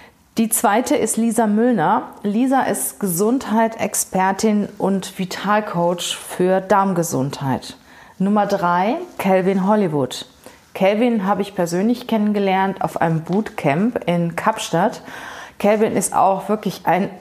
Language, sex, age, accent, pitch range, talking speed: German, female, 30-49, German, 185-225 Hz, 110 wpm